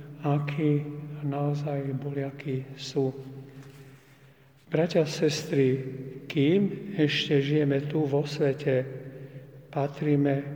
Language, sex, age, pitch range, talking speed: Slovak, male, 50-69, 135-145 Hz, 80 wpm